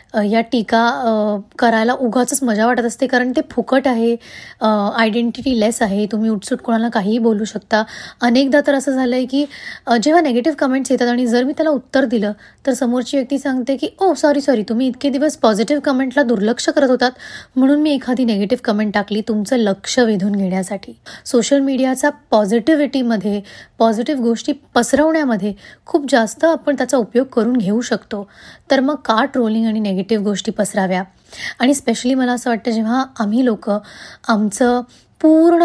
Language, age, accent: Marathi, 20-39, native